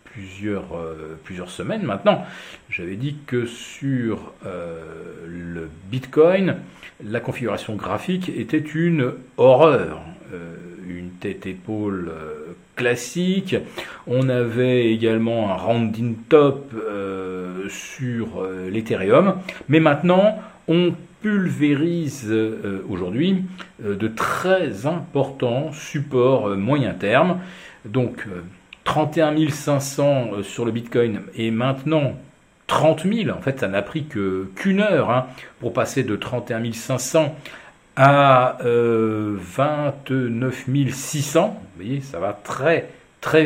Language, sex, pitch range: French, male, 110-155 Hz